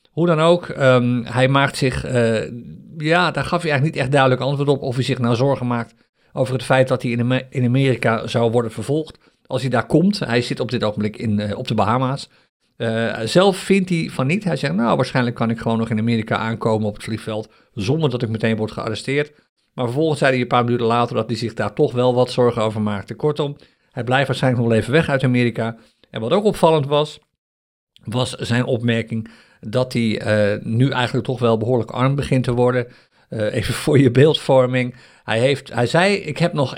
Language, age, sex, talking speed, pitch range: Dutch, 50-69, male, 210 wpm, 115-145 Hz